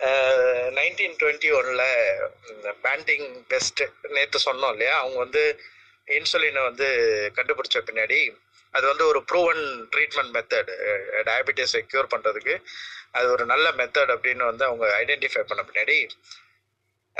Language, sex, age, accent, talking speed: Tamil, male, 30-49, native, 120 wpm